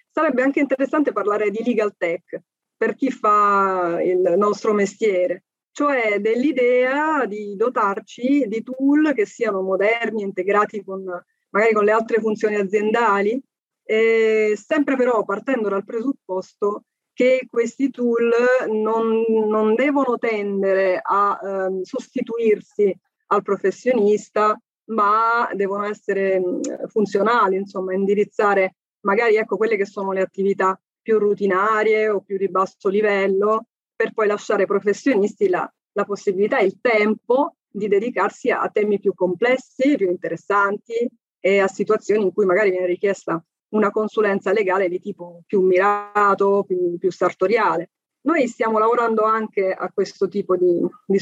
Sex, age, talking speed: female, 30-49, 135 wpm